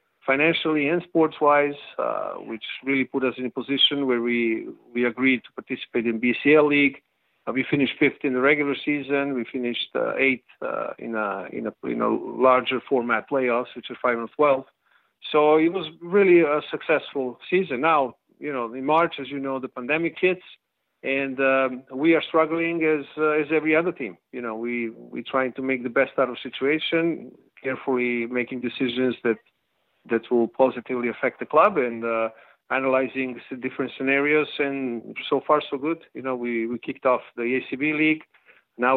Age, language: 50-69, English